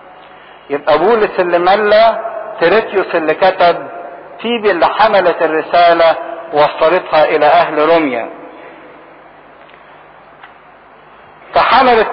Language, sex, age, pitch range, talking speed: English, male, 50-69, 155-185 Hz, 80 wpm